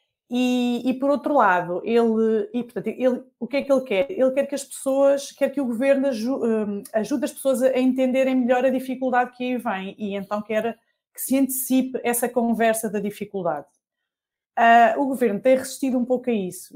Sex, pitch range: female, 200-250 Hz